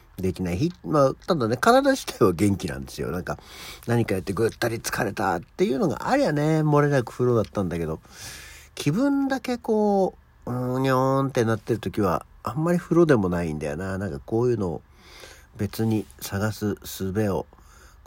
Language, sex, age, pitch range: Japanese, male, 50-69, 90-130 Hz